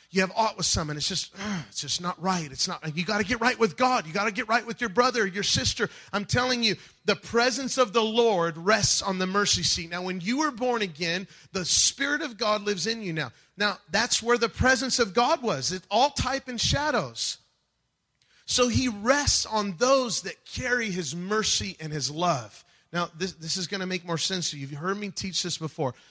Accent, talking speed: American, 230 wpm